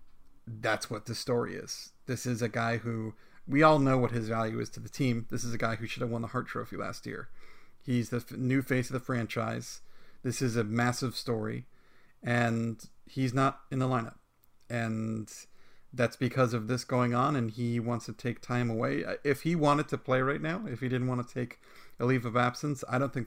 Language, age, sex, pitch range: English, 40-59, male, 115-130 Hz